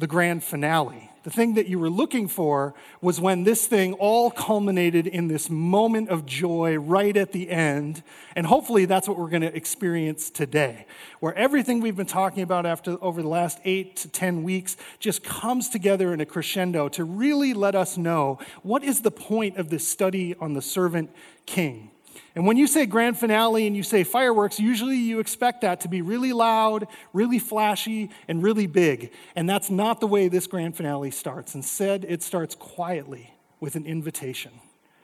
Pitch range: 165-215 Hz